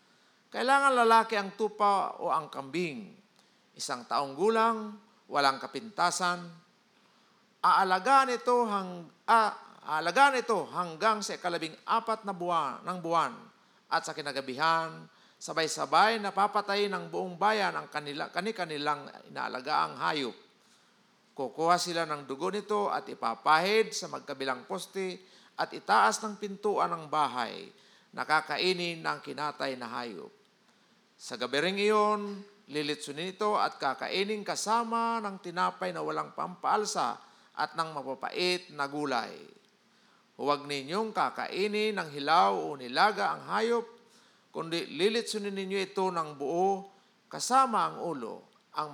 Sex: male